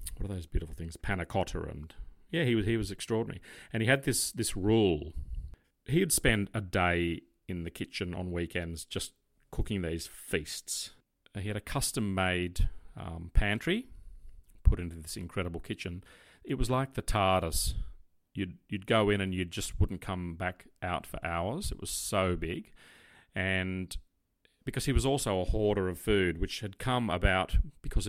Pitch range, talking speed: 85-105 Hz, 170 wpm